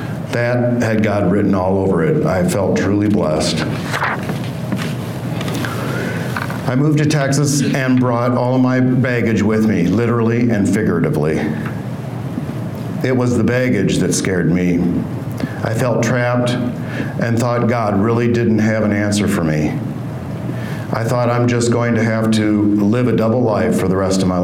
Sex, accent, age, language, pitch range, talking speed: male, American, 50-69, English, 95-120 Hz, 155 wpm